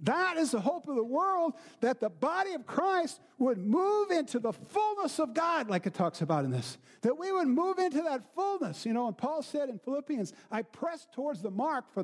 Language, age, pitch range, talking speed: English, 50-69, 205-285 Hz, 225 wpm